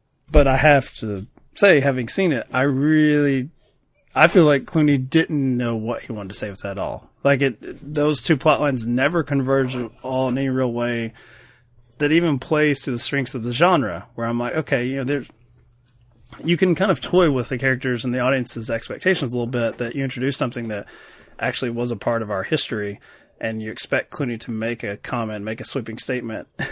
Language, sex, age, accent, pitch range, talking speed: English, male, 30-49, American, 120-150 Hz, 210 wpm